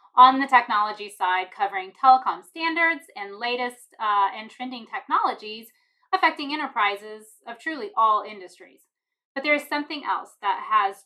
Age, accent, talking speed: 30-49, American, 140 wpm